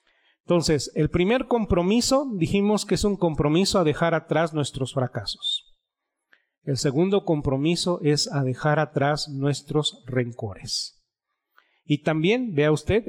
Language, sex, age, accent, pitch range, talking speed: Spanish, male, 40-59, Mexican, 140-170 Hz, 125 wpm